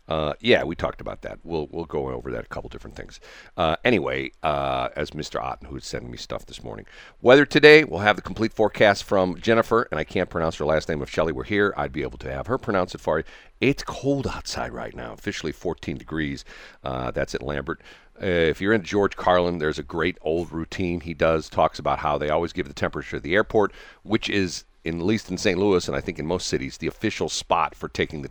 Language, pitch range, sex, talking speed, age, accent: English, 80-100 Hz, male, 235 wpm, 40-59, American